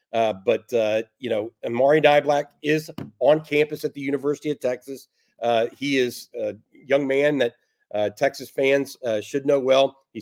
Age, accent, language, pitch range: 50-69, American, English, 120-145 Hz